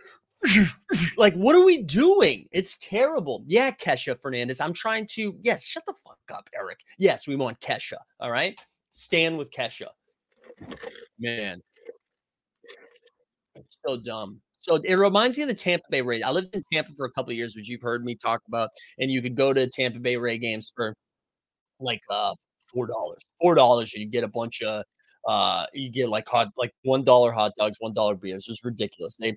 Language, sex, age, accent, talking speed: English, male, 30-49, American, 185 wpm